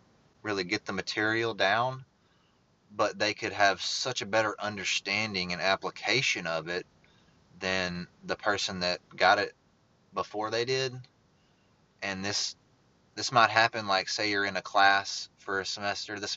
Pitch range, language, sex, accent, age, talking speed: 90-105 Hz, English, male, American, 20-39, 150 wpm